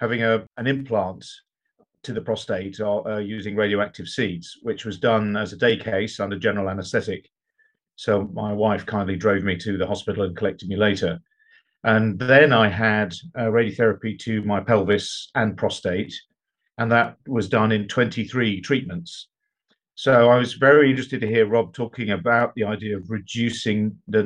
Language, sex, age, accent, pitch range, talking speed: English, male, 50-69, British, 105-125 Hz, 165 wpm